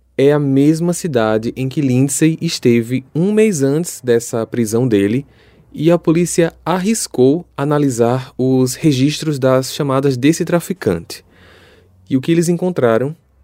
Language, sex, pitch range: Portuguese, male, 120-155 Hz